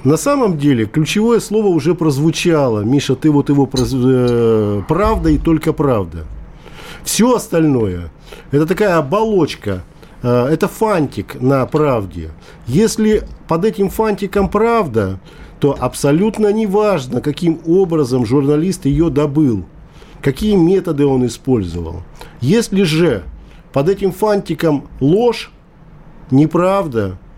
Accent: native